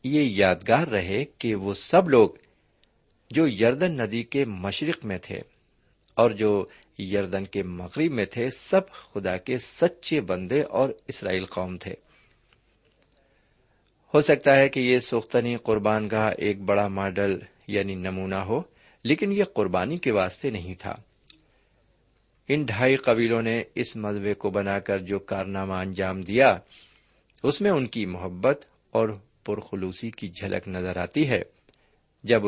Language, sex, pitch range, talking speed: Urdu, male, 100-135 Hz, 145 wpm